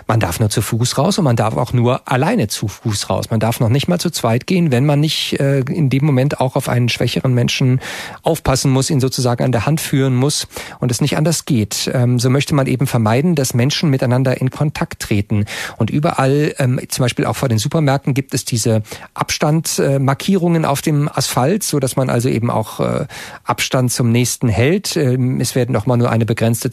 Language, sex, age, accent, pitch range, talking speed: German, male, 40-59, German, 120-145 Hz, 200 wpm